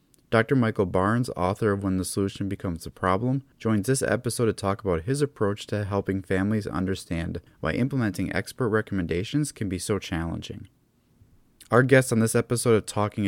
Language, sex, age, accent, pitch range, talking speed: English, male, 30-49, American, 95-115 Hz, 170 wpm